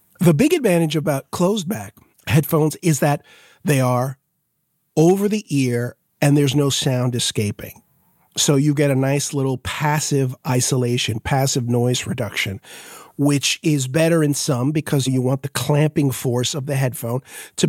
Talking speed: 150 wpm